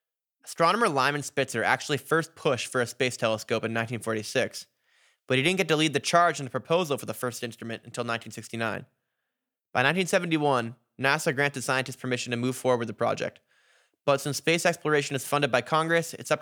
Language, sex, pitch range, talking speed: English, male, 115-145 Hz, 185 wpm